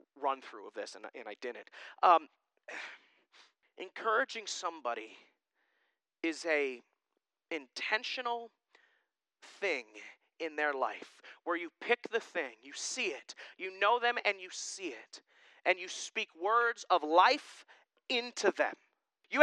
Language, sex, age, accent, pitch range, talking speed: English, male, 30-49, American, 185-295 Hz, 130 wpm